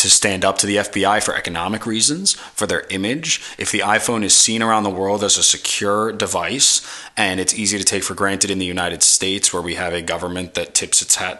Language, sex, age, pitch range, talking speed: English, male, 20-39, 90-110 Hz, 230 wpm